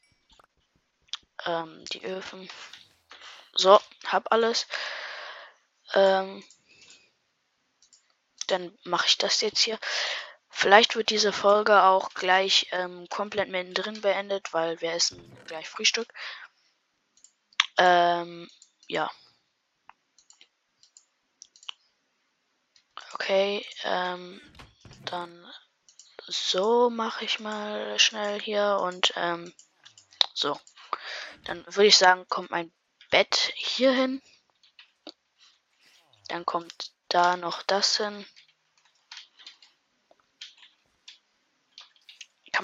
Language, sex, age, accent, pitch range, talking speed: German, female, 20-39, German, 180-210 Hz, 80 wpm